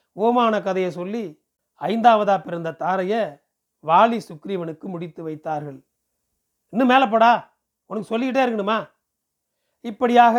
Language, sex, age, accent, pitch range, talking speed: Tamil, male, 40-59, native, 195-230 Hz, 100 wpm